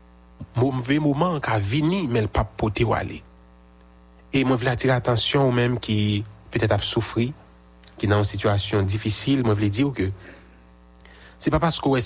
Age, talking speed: 30-49, 170 wpm